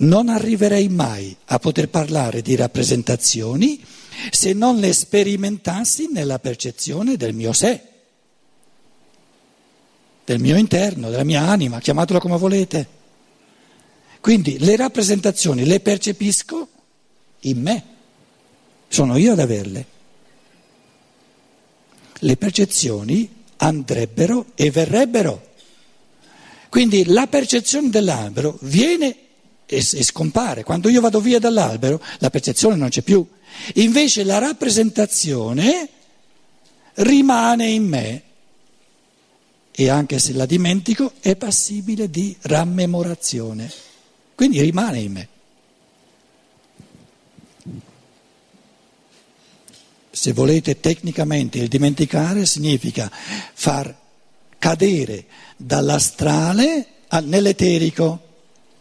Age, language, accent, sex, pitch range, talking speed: 60-79, Italian, native, male, 145-220 Hz, 90 wpm